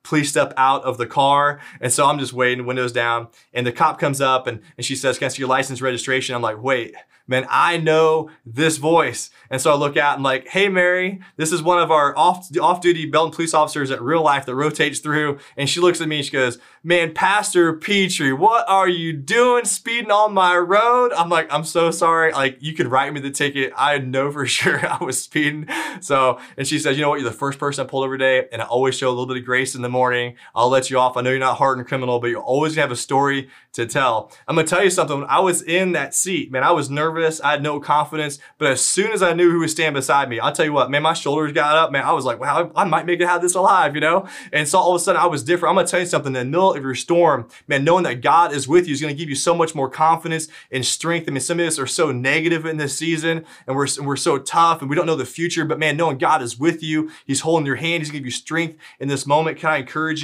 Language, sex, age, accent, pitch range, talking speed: English, male, 20-39, American, 135-165 Hz, 285 wpm